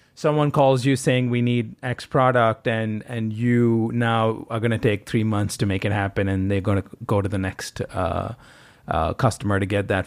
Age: 30-49